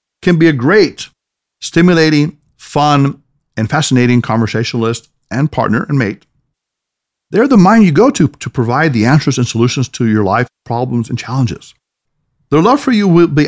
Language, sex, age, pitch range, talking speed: English, male, 50-69, 125-170 Hz, 165 wpm